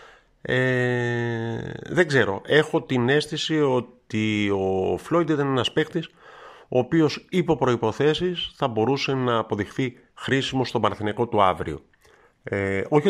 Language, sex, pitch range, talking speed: Greek, male, 105-145 Hz, 125 wpm